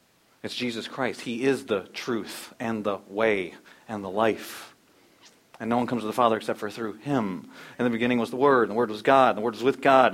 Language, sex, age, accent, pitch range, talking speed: English, male, 40-59, American, 110-135 Hz, 245 wpm